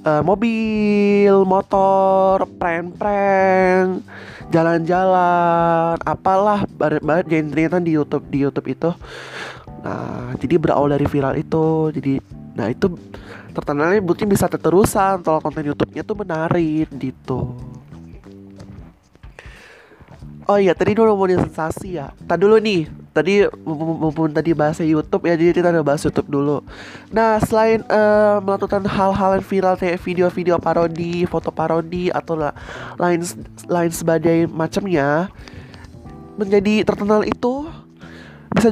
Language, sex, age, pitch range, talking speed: Indonesian, male, 20-39, 150-195 Hz, 125 wpm